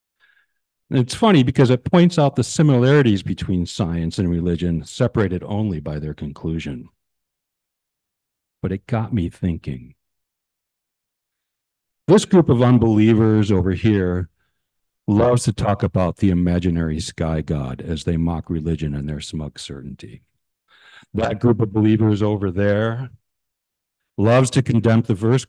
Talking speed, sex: 130 wpm, male